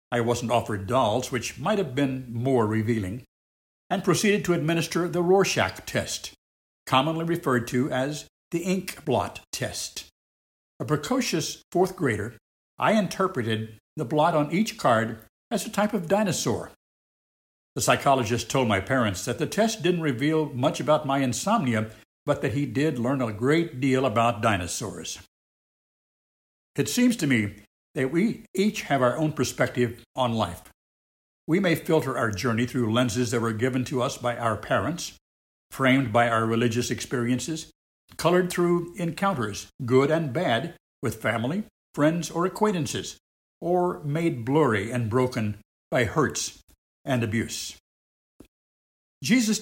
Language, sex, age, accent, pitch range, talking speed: English, male, 60-79, American, 115-160 Hz, 145 wpm